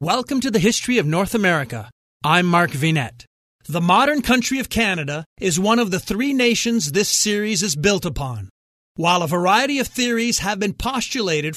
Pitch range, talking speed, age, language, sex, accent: 160-220 Hz, 175 wpm, 40-59, English, male, American